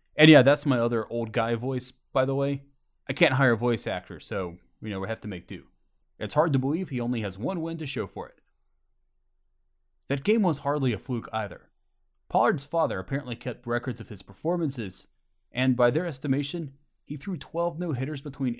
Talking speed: 200 wpm